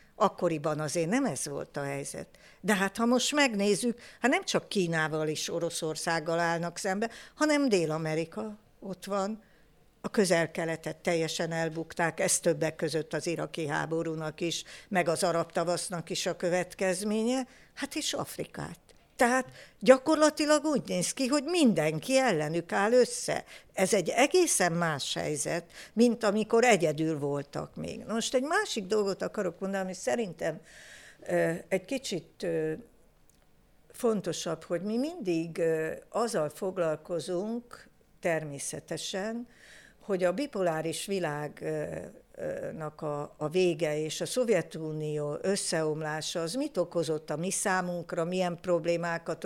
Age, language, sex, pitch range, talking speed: 60-79, Hungarian, female, 160-225 Hz, 120 wpm